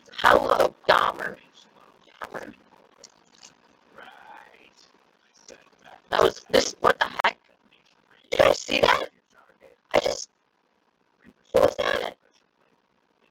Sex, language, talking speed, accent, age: female, English, 75 wpm, American, 30-49